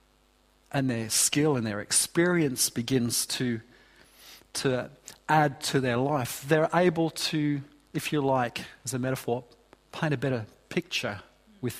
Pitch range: 125-155 Hz